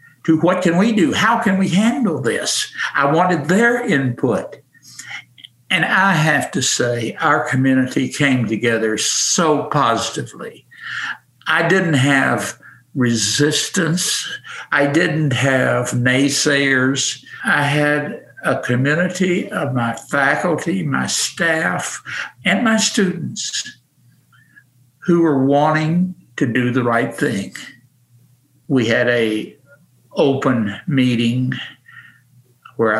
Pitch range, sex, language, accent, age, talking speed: 115-150 Hz, male, English, American, 60-79, 105 wpm